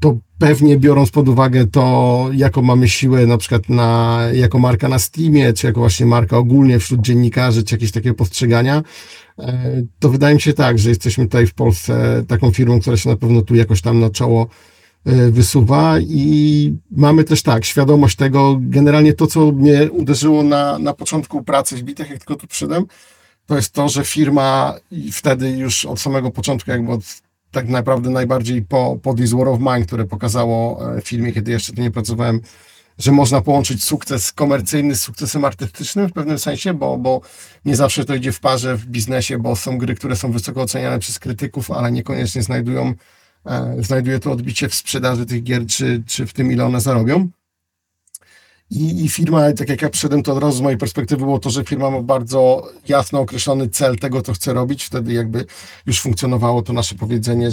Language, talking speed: Polish, 185 wpm